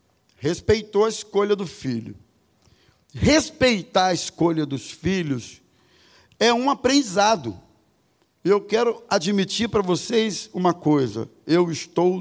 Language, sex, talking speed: Portuguese, male, 110 wpm